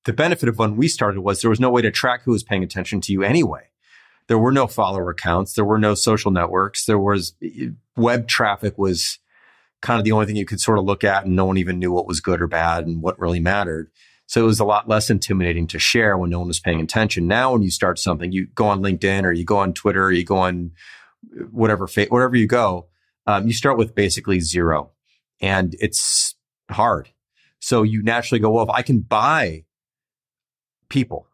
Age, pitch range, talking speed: 30-49, 85-115 Hz, 225 wpm